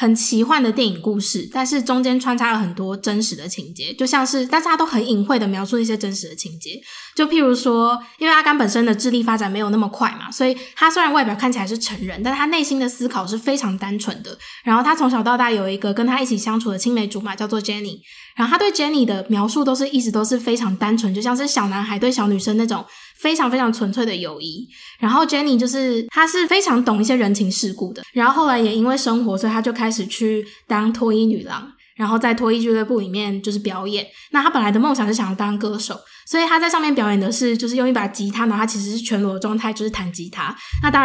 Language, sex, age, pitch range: Chinese, female, 20-39, 210-260 Hz